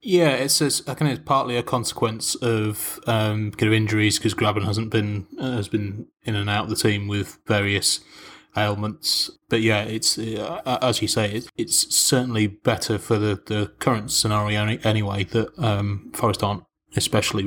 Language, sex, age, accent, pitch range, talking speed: English, male, 20-39, British, 105-120 Hz, 180 wpm